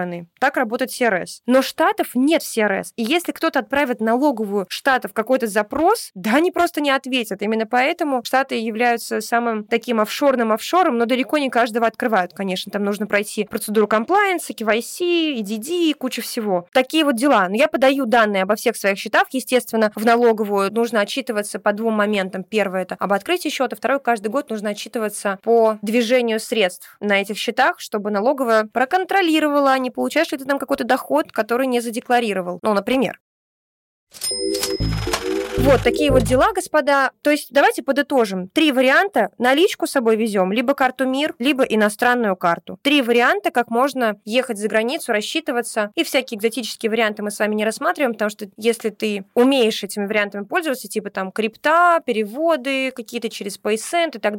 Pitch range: 215-275 Hz